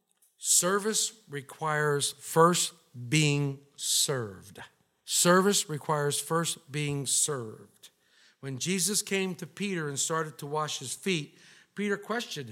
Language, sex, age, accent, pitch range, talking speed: English, male, 50-69, American, 165-255 Hz, 110 wpm